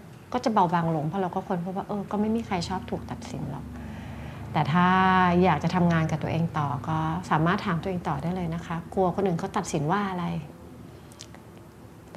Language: Thai